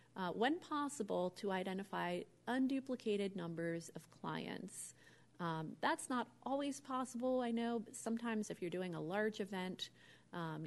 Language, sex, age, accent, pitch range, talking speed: English, female, 30-49, American, 165-215 Hz, 140 wpm